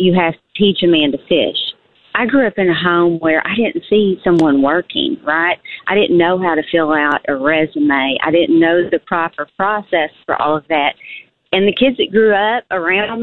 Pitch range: 165-210 Hz